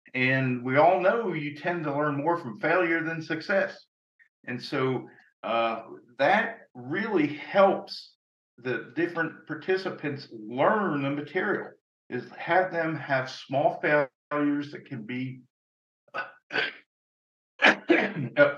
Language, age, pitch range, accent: English, 50-69, 120-165 Hz, American